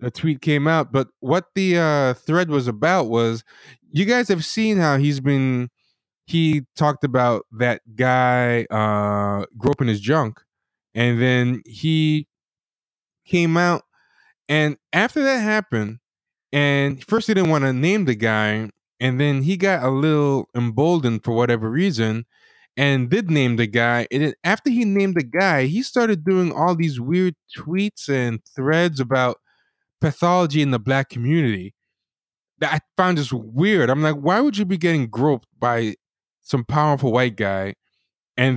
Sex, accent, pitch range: male, American, 120-165 Hz